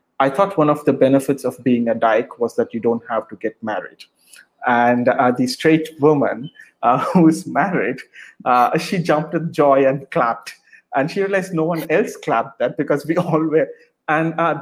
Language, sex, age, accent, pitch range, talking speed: Tamil, male, 30-49, native, 130-160 Hz, 195 wpm